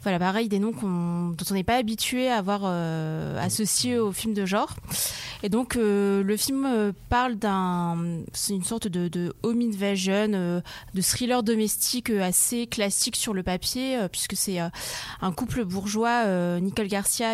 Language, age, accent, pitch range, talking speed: French, 20-39, French, 180-230 Hz, 175 wpm